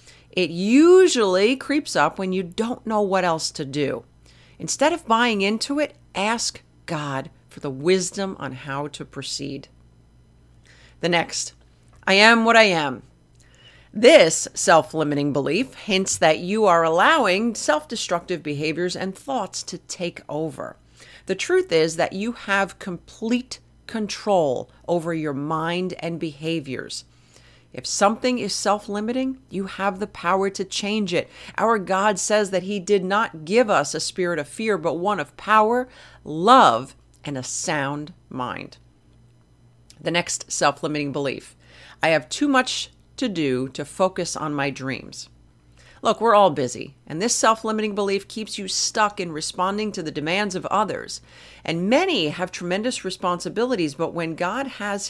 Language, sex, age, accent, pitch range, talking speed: English, female, 40-59, American, 145-210 Hz, 150 wpm